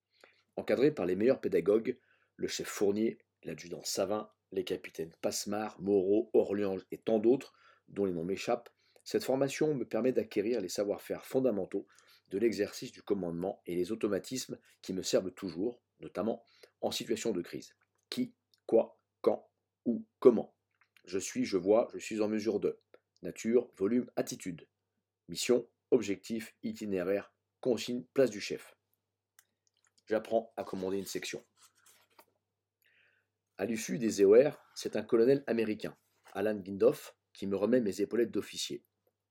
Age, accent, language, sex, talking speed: 40-59, French, French, male, 140 wpm